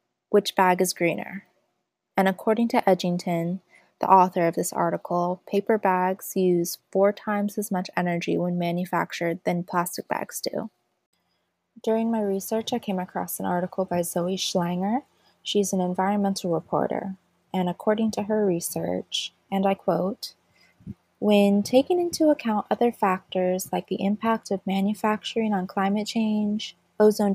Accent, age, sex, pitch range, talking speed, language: American, 20-39, female, 180-210 Hz, 145 wpm, English